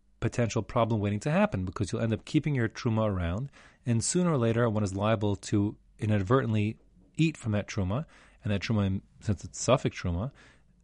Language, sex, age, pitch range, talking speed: English, male, 30-49, 100-125 Hz, 185 wpm